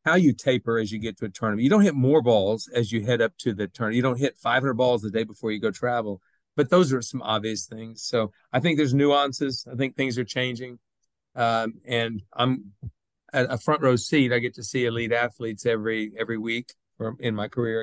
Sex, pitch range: male, 115-140 Hz